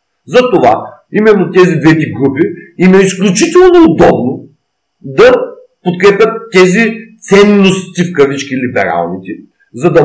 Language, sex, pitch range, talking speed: Bulgarian, male, 165-220 Hz, 105 wpm